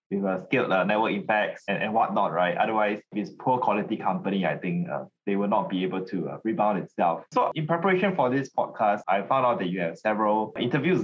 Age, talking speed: 20-39, 230 wpm